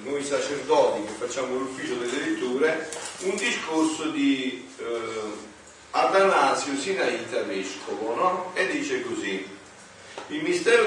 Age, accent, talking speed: 50-69, native, 105 wpm